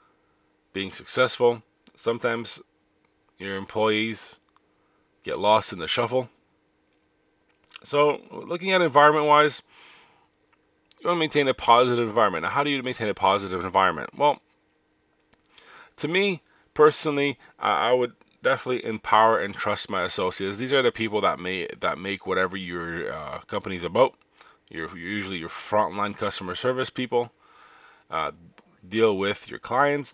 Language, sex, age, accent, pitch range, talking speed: English, male, 20-39, American, 100-140 Hz, 125 wpm